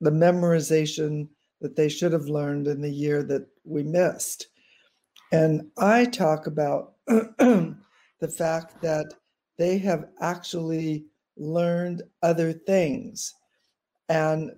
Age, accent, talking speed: 60-79, American, 110 wpm